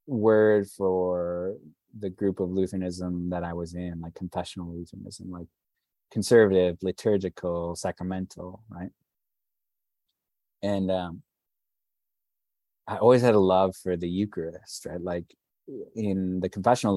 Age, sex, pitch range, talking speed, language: 20-39, male, 90-105 Hz, 115 wpm, English